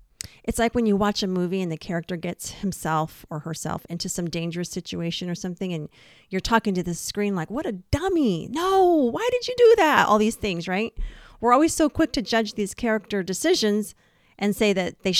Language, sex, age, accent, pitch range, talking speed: English, female, 40-59, American, 170-230 Hz, 210 wpm